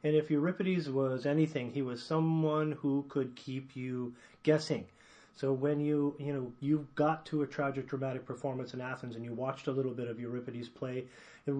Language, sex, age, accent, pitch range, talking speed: English, male, 30-49, American, 135-160 Hz, 195 wpm